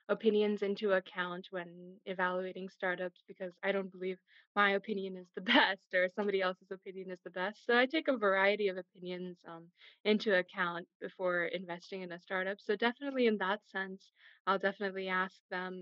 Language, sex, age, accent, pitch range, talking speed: English, female, 20-39, American, 180-205 Hz, 175 wpm